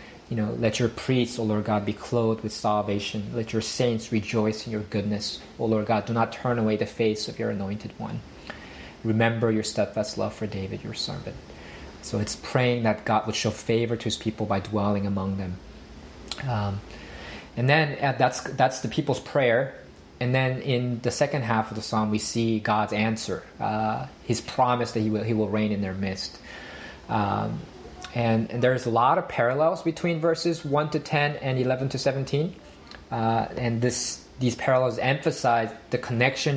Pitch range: 105-125 Hz